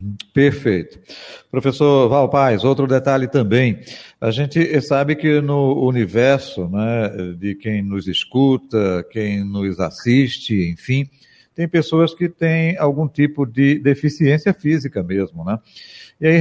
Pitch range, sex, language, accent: 115-155 Hz, male, Portuguese, Brazilian